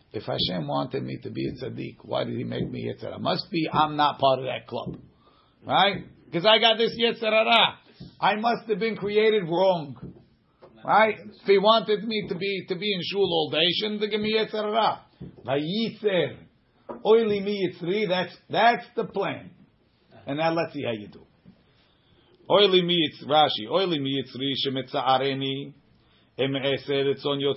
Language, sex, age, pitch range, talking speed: English, male, 50-69, 135-190 Hz, 165 wpm